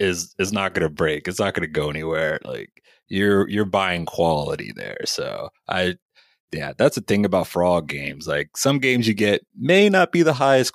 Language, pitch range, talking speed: English, 80-115 Hz, 205 wpm